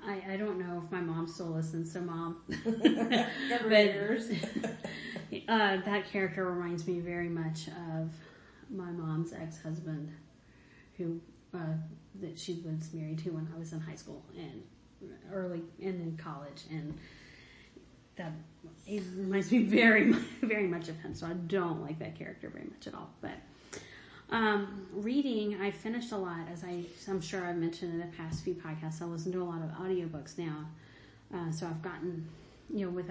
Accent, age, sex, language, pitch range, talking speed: American, 30-49, female, English, 165-200 Hz, 170 wpm